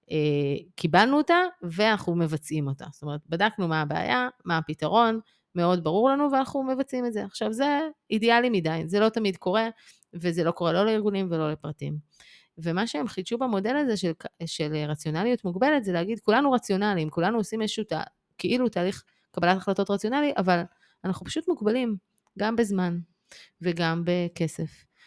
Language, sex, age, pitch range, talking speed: Hebrew, female, 30-49, 165-220 Hz, 155 wpm